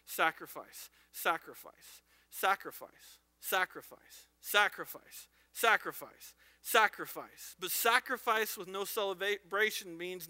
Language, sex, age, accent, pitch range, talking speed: English, male, 40-59, American, 180-245 Hz, 75 wpm